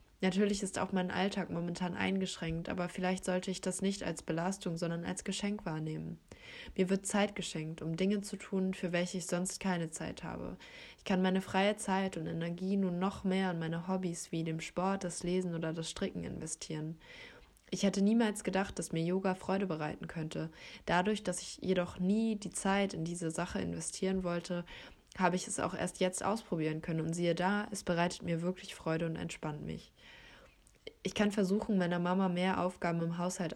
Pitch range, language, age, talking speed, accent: 170-190 Hz, German, 20-39, 190 wpm, German